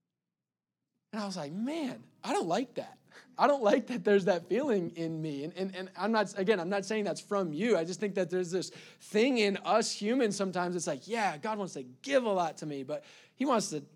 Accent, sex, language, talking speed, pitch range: American, male, English, 240 wpm, 190-240 Hz